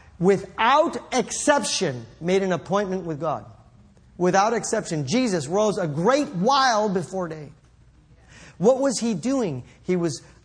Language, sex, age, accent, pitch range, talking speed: English, male, 40-59, American, 160-225 Hz, 125 wpm